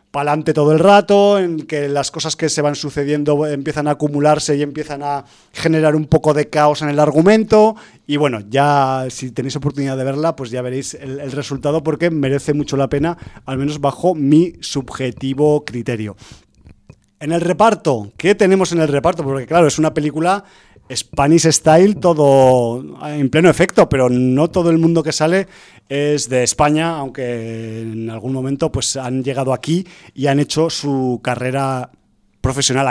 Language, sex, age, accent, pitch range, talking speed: Spanish, male, 30-49, Spanish, 135-165 Hz, 170 wpm